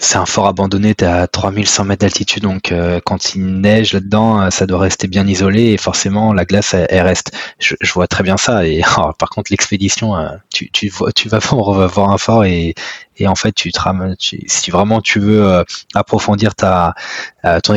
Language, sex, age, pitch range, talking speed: French, male, 20-39, 90-105 Hz, 225 wpm